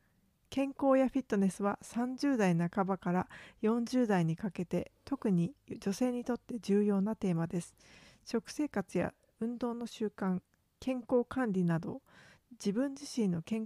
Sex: female